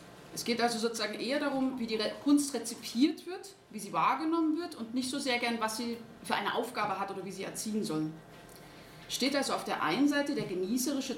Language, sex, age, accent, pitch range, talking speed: German, female, 30-49, German, 185-255 Hz, 210 wpm